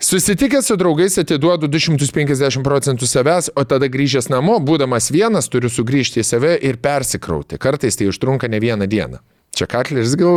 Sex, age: male, 30-49